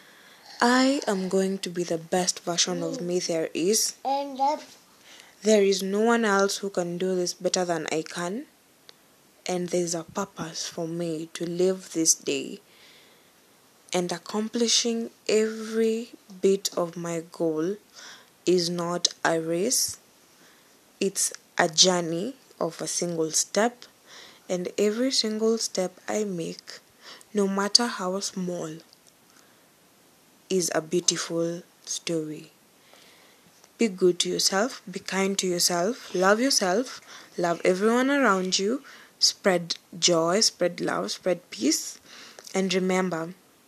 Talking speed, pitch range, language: 120 wpm, 175-215 Hz, English